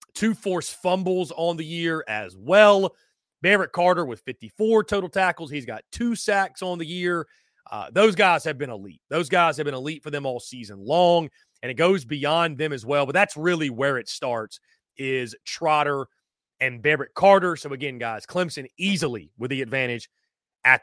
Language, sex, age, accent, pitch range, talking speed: English, male, 30-49, American, 140-195 Hz, 185 wpm